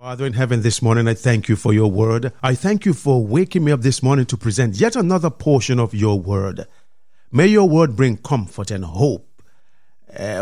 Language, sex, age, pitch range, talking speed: English, male, 50-69, 120-180 Hz, 205 wpm